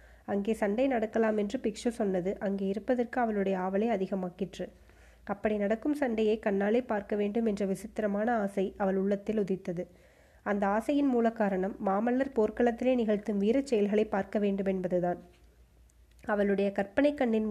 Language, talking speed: Tamil, 130 wpm